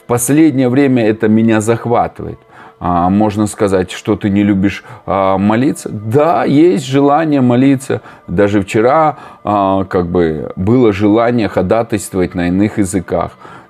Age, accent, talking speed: 30-49, native, 105 wpm